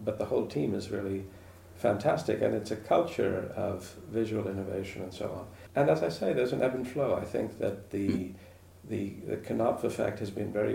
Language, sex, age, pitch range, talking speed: English, male, 50-69, 90-110 Hz, 205 wpm